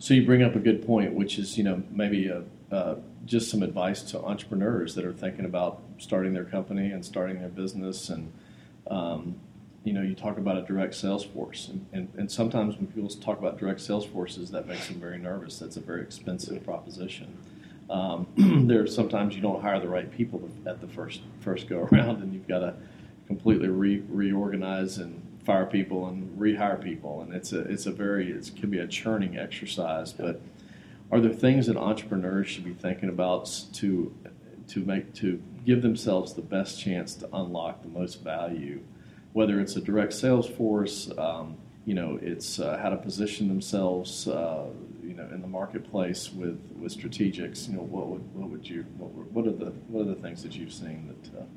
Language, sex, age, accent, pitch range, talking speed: English, male, 40-59, American, 95-105 Hz, 200 wpm